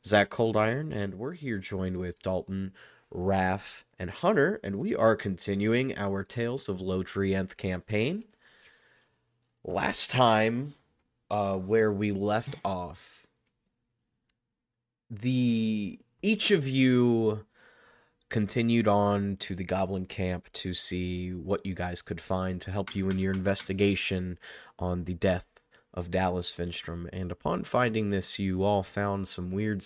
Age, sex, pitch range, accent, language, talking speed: 30-49, male, 95-110 Hz, American, English, 135 wpm